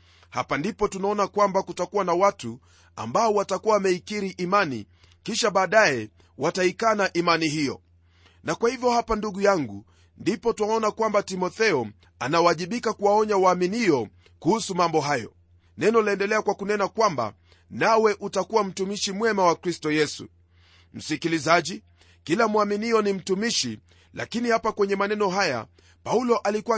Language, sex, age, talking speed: Swahili, male, 40-59, 125 wpm